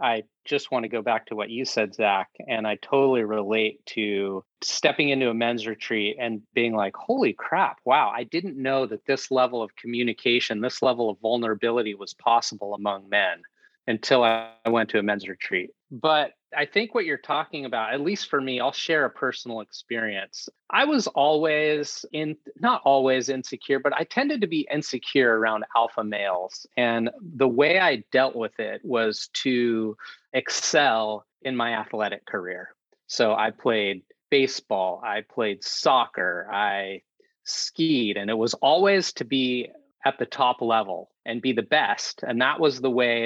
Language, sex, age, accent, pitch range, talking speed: English, male, 30-49, American, 110-145 Hz, 170 wpm